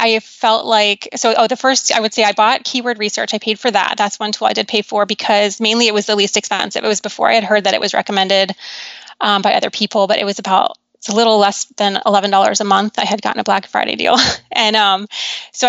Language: English